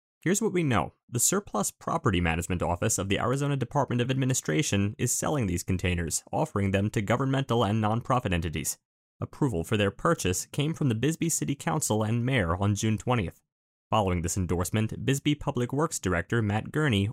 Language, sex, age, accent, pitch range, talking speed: English, male, 30-49, American, 100-130 Hz, 175 wpm